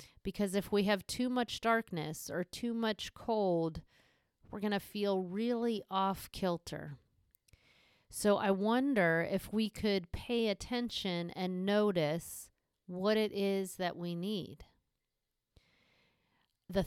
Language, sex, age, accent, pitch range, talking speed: English, female, 30-49, American, 175-215 Hz, 125 wpm